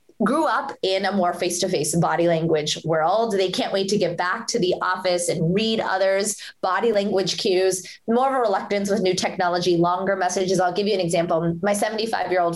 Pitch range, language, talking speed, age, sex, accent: 175-230 Hz, English, 190 wpm, 20-39, female, American